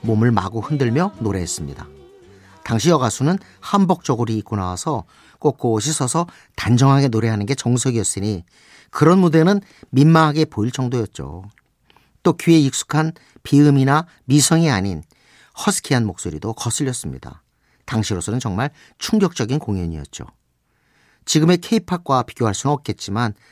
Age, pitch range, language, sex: 50-69, 105-155 Hz, Korean, male